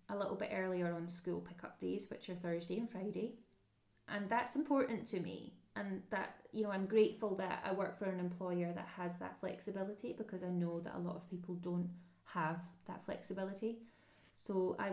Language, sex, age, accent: English, female, 20-39, British